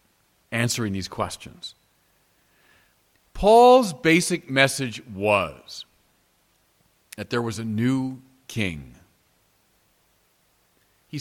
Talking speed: 75 wpm